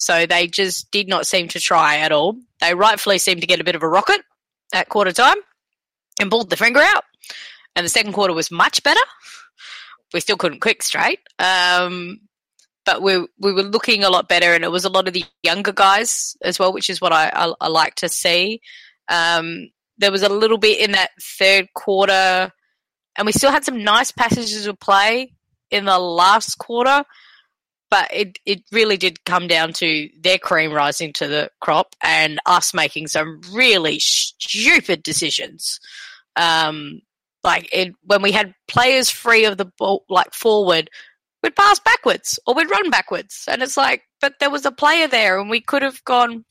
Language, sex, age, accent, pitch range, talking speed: English, female, 20-39, Australian, 170-225 Hz, 190 wpm